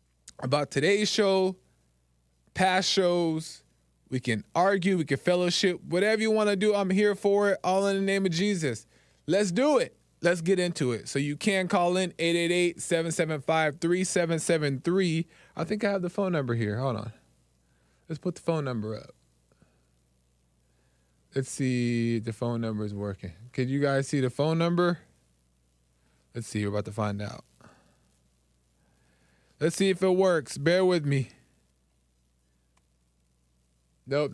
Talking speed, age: 150 wpm, 20-39